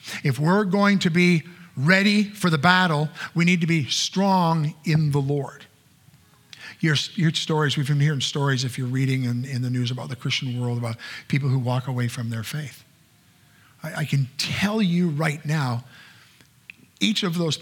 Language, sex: English, male